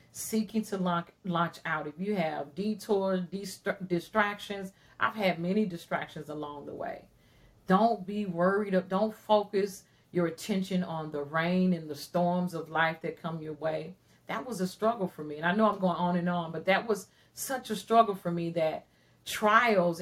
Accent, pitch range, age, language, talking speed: American, 160-205 Hz, 40-59, English, 175 wpm